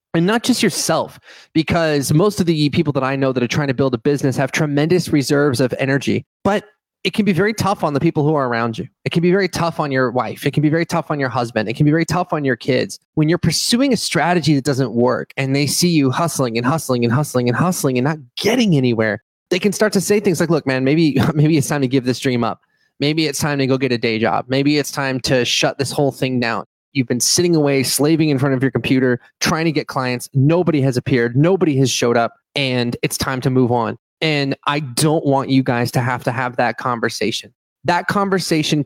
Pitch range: 130-160 Hz